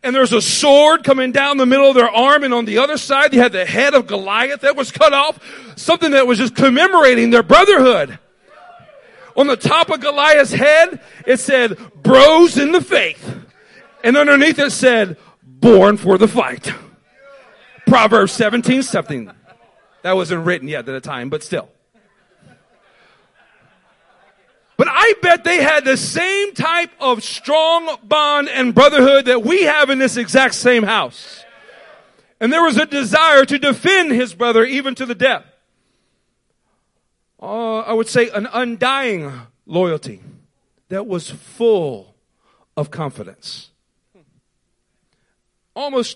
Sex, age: male, 40-59